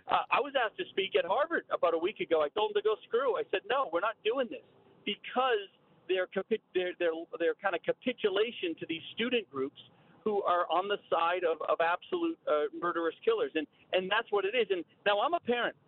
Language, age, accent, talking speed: English, 40-59, American, 215 wpm